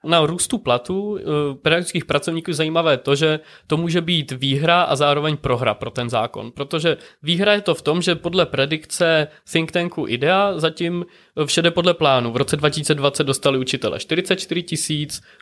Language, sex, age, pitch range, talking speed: Czech, male, 20-39, 140-175 Hz, 165 wpm